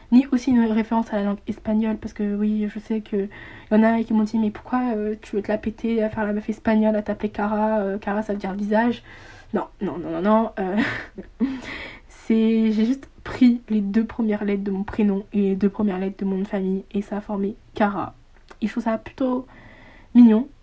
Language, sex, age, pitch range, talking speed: French, female, 20-39, 210-235 Hz, 225 wpm